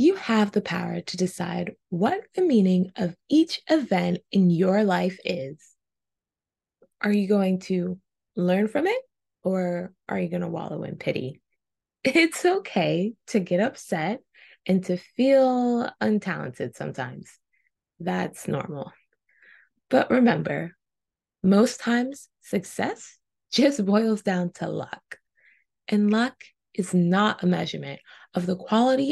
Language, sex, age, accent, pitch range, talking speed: English, female, 20-39, American, 180-245 Hz, 125 wpm